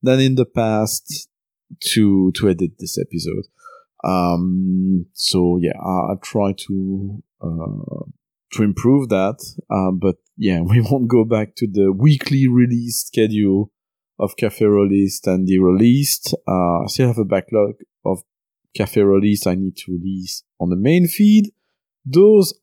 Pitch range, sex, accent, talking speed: 95-125 Hz, male, French, 145 wpm